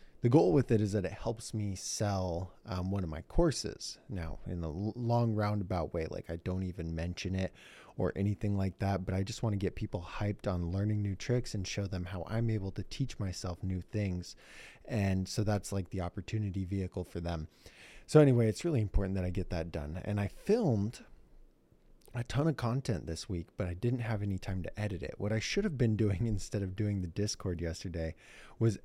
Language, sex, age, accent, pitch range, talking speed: English, male, 20-39, American, 90-110 Hz, 215 wpm